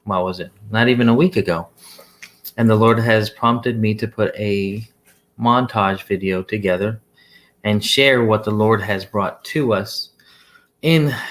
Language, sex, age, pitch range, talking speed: English, male, 30-49, 105-120 Hz, 160 wpm